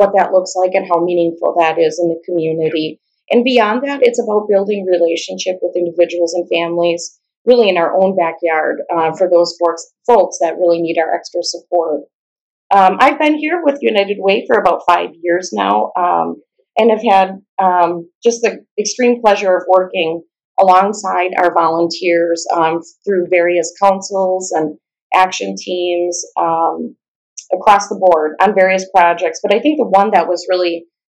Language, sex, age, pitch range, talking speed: English, female, 30-49, 170-195 Hz, 165 wpm